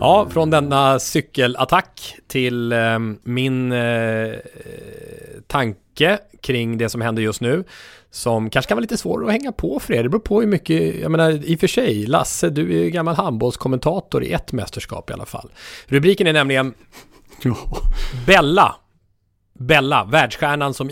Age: 30-49